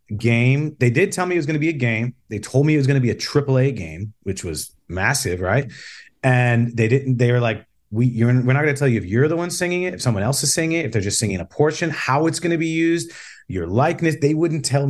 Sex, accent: male, American